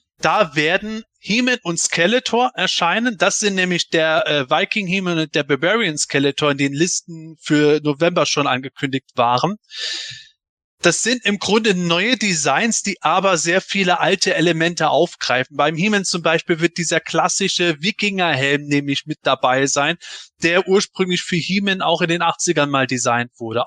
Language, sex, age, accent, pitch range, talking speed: German, male, 30-49, German, 160-200 Hz, 155 wpm